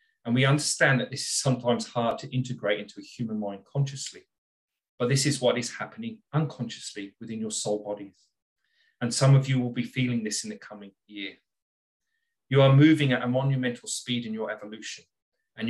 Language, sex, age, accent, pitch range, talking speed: English, male, 30-49, British, 110-135 Hz, 185 wpm